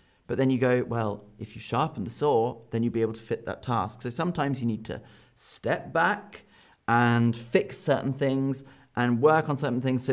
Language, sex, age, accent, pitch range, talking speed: English, male, 30-49, British, 115-160 Hz, 205 wpm